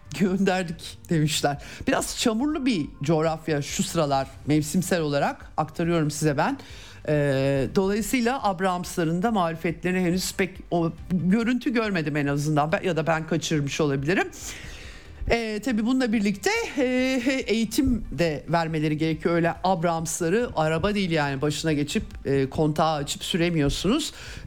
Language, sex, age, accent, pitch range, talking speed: Turkish, male, 50-69, native, 160-225 Hz, 120 wpm